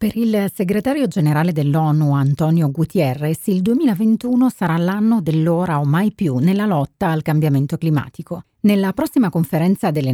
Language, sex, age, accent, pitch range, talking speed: Italian, female, 40-59, native, 145-205 Hz, 140 wpm